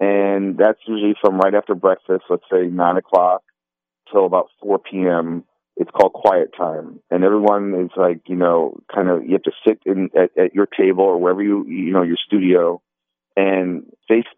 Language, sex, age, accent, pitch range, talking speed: English, male, 40-59, American, 95-135 Hz, 190 wpm